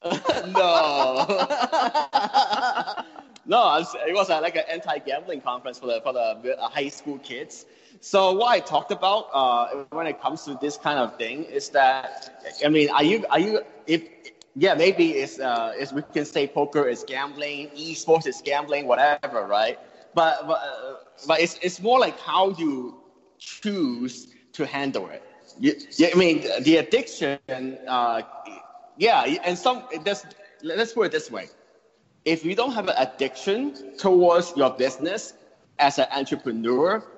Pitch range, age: 145-220 Hz, 20-39